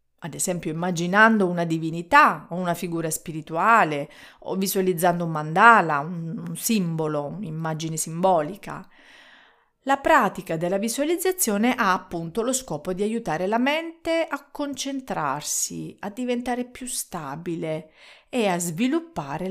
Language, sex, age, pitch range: Italian, female, 40-59, 165-230 Hz